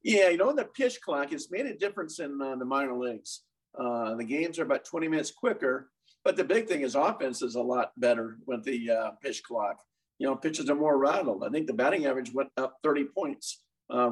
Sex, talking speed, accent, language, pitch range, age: male, 230 wpm, American, English, 125-155 Hz, 50-69